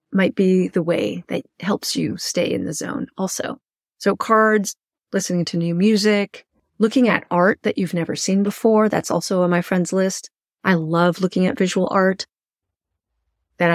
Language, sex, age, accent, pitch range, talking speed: English, female, 30-49, American, 170-210 Hz, 170 wpm